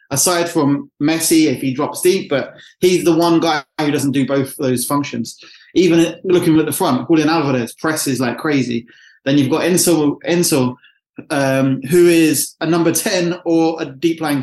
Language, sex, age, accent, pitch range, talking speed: English, male, 20-39, British, 140-170 Hz, 180 wpm